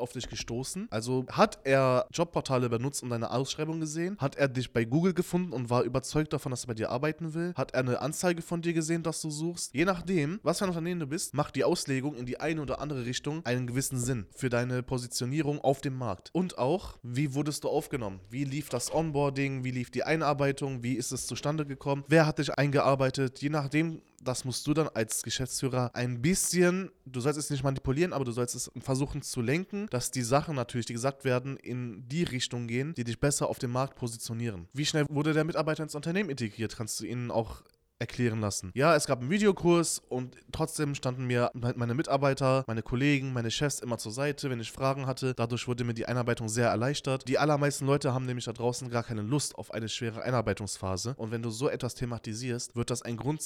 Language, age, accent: German, 20-39, German